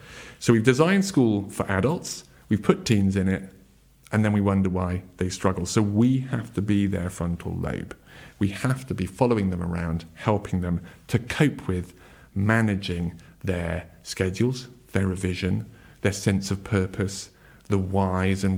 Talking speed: 160 wpm